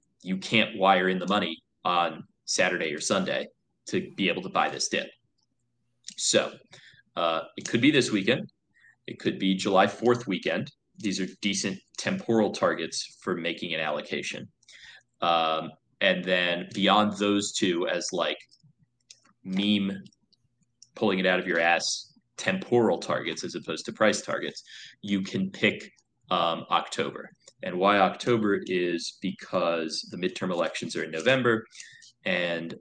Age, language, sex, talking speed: 20-39, English, male, 145 wpm